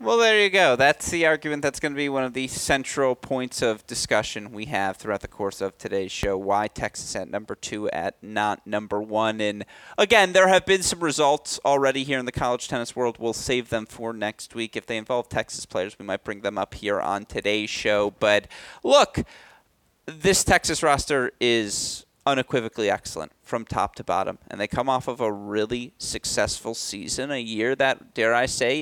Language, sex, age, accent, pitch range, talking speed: English, male, 30-49, American, 110-140 Hz, 200 wpm